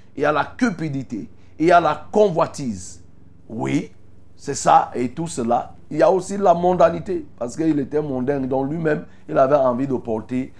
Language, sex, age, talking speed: French, male, 50-69, 185 wpm